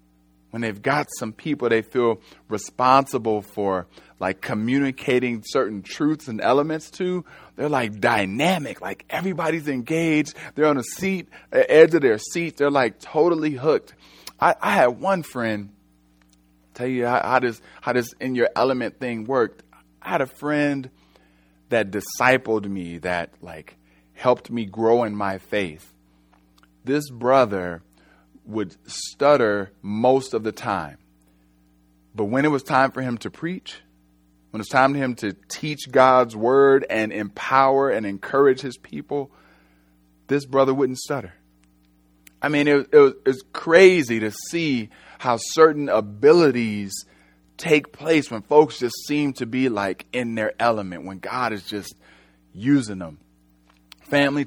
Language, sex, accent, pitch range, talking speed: English, male, American, 90-140 Hz, 150 wpm